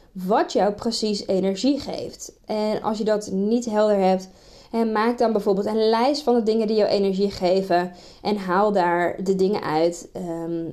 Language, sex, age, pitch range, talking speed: Dutch, female, 20-39, 185-220 Hz, 180 wpm